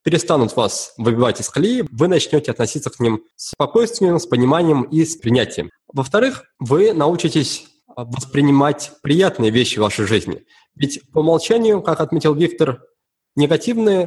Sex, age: male, 20-39